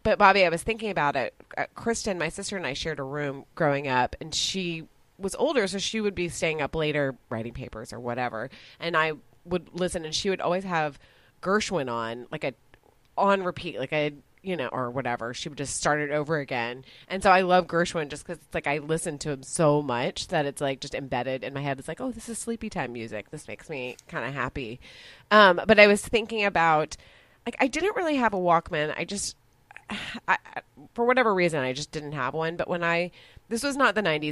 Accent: American